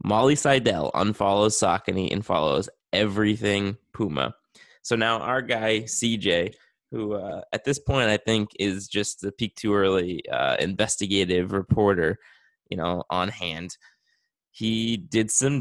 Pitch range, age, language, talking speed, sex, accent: 100-130 Hz, 20-39, English, 140 wpm, male, American